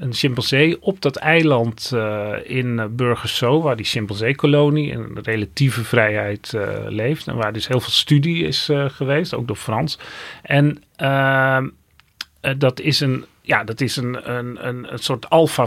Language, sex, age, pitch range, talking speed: Dutch, male, 40-59, 120-150 Hz, 170 wpm